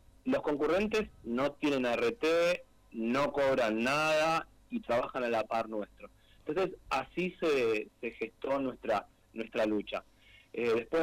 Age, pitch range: 30-49, 120-165 Hz